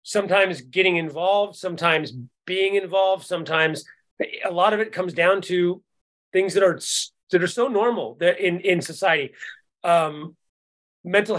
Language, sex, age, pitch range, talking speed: English, male, 30-49, 165-200 Hz, 140 wpm